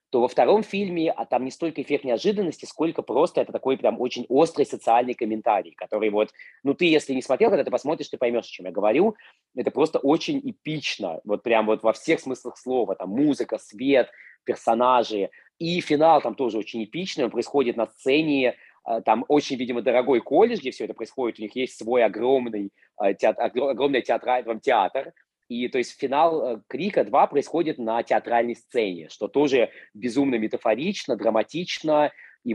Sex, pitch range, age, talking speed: male, 110-150 Hz, 20-39, 170 wpm